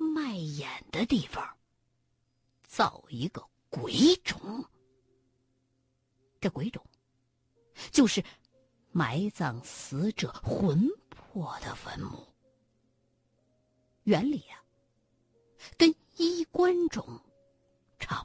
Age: 50-69